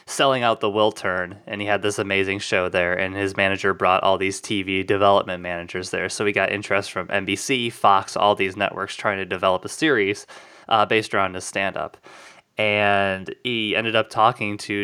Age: 20-39